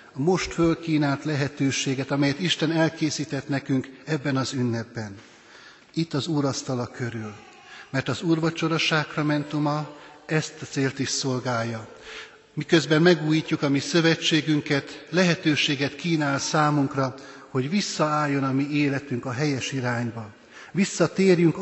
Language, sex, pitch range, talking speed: Hungarian, male, 125-155 Hz, 115 wpm